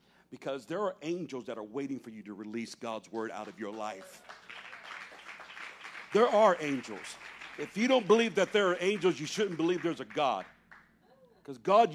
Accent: American